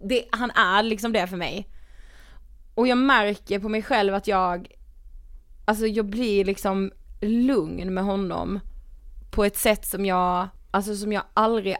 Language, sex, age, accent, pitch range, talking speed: Swedish, female, 30-49, native, 195-230 Hz, 160 wpm